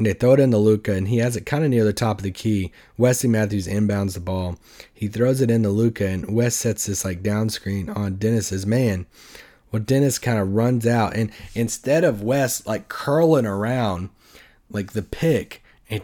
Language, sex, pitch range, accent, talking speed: English, male, 105-125 Hz, American, 210 wpm